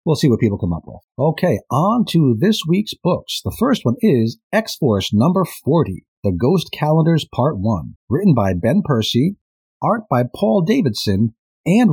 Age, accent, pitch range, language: 40-59, American, 115-175 Hz, English